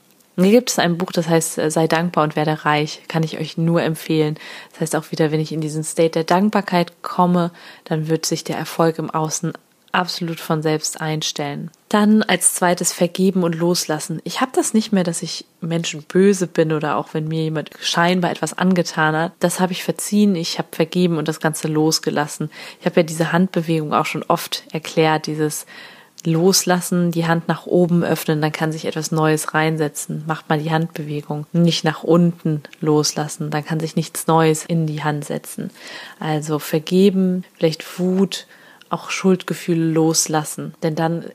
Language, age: German, 20-39